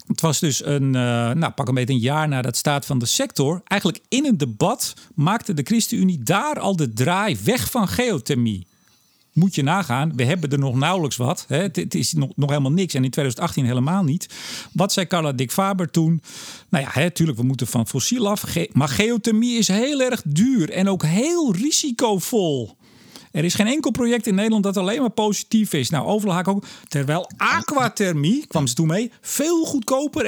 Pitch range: 140-210 Hz